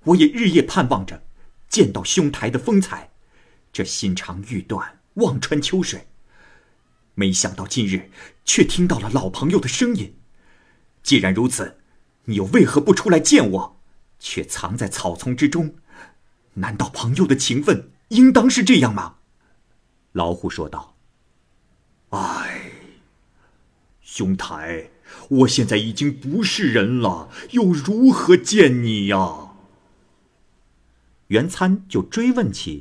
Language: Chinese